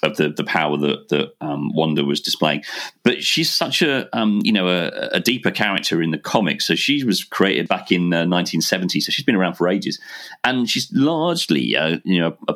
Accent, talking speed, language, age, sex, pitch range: British, 215 wpm, English, 40-59, male, 80-95 Hz